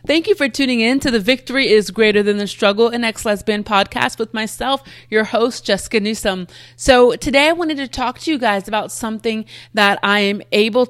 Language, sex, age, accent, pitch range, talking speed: English, female, 30-49, American, 195-235 Hz, 210 wpm